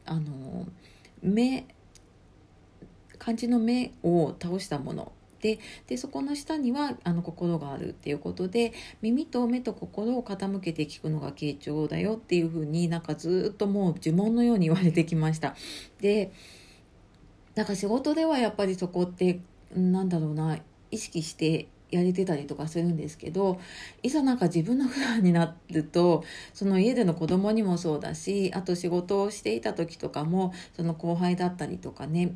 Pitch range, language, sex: 160-200 Hz, Japanese, female